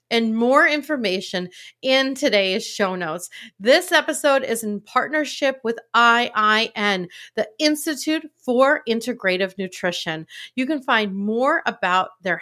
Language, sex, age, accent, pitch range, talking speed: English, female, 40-59, American, 190-260 Hz, 120 wpm